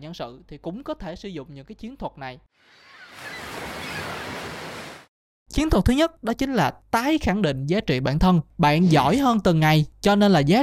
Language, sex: Vietnamese, male